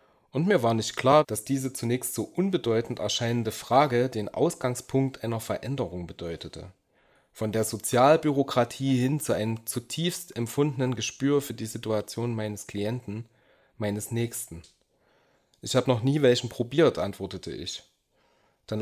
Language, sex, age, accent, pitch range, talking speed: German, male, 30-49, German, 105-130 Hz, 135 wpm